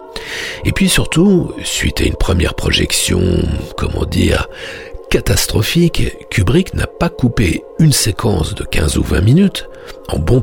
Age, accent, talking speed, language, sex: 60-79, French, 140 wpm, French, male